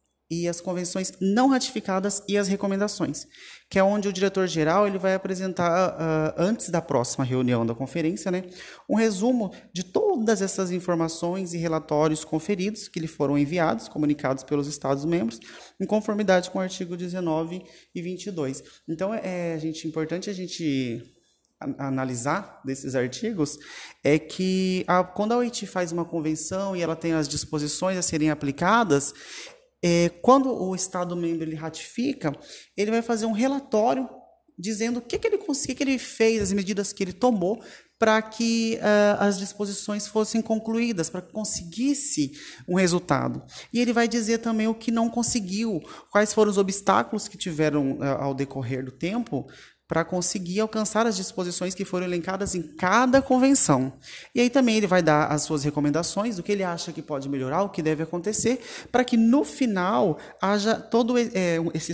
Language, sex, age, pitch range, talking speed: Portuguese, male, 30-49, 160-220 Hz, 160 wpm